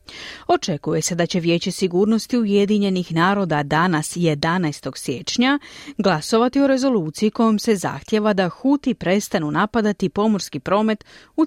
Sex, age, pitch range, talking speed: female, 40-59, 170-245 Hz, 125 wpm